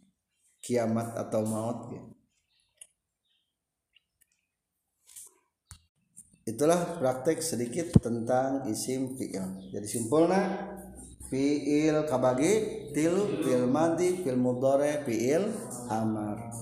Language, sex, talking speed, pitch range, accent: Indonesian, male, 70 wpm, 115-155 Hz, native